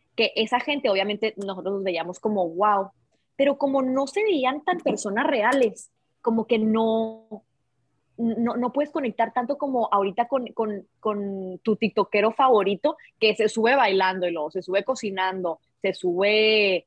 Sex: female